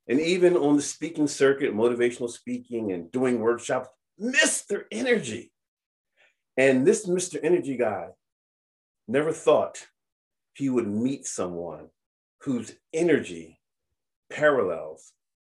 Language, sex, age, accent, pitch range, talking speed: English, male, 40-59, American, 115-175 Hz, 105 wpm